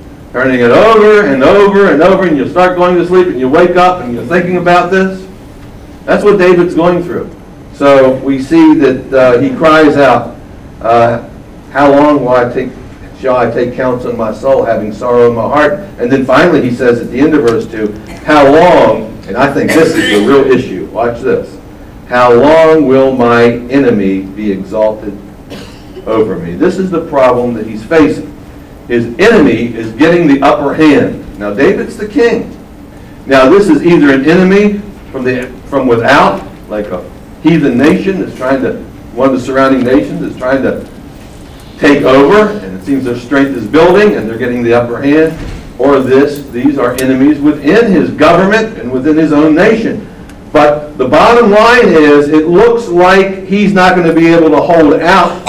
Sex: male